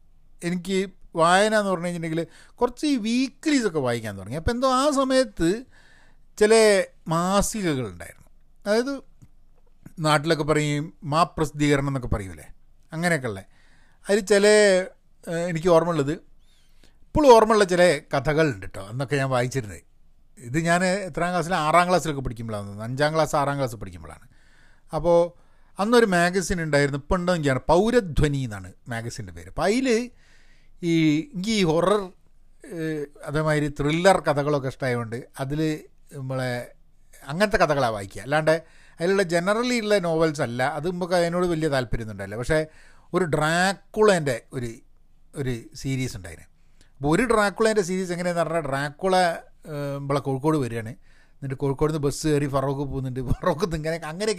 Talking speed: 120 wpm